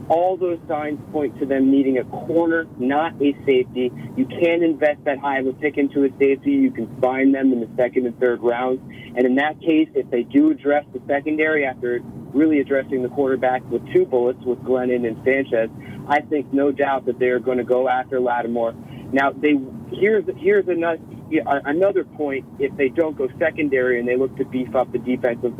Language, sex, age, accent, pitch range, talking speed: English, male, 40-59, American, 125-150 Hz, 200 wpm